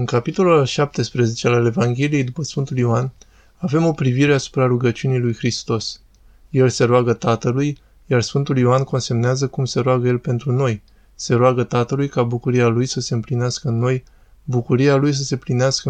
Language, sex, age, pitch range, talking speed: Romanian, male, 20-39, 120-135 Hz, 170 wpm